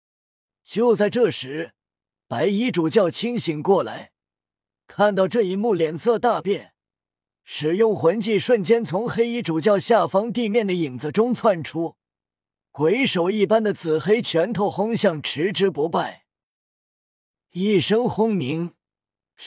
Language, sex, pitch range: Chinese, male, 165-225 Hz